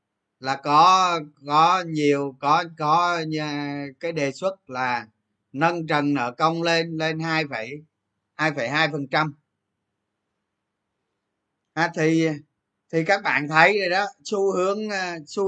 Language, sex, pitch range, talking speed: Vietnamese, male, 125-175 Hz, 120 wpm